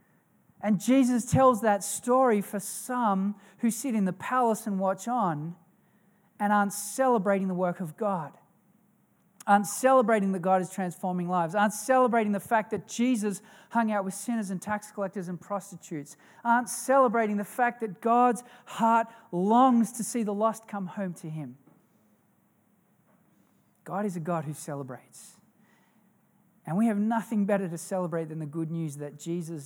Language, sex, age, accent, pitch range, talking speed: English, male, 40-59, Australian, 175-215 Hz, 160 wpm